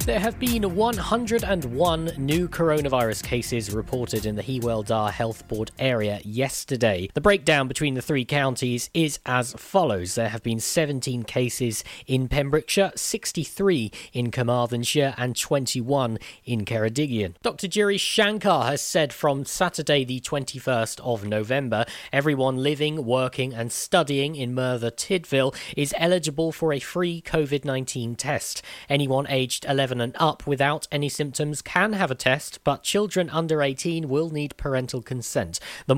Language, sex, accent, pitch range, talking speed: English, male, British, 125-155 Hz, 145 wpm